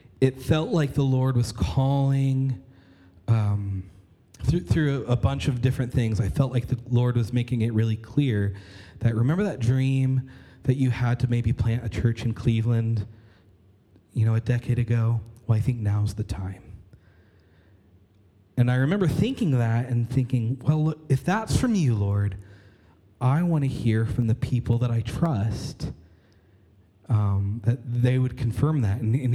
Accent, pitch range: American, 100-135 Hz